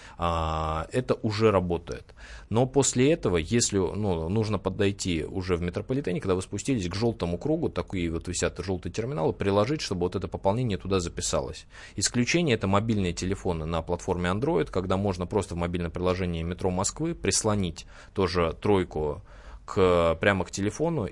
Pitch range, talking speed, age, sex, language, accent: 90-110 Hz, 150 wpm, 20-39, male, Russian, native